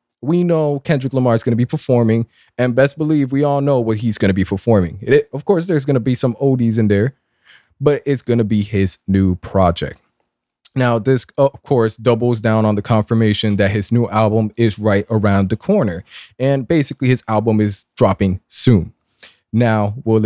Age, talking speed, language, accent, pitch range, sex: 20-39, 195 wpm, English, American, 105-130 Hz, male